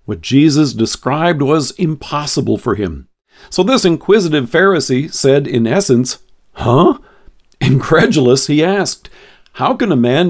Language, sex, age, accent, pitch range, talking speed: English, male, 50-69, American, 125-175 Hz, 130 wpm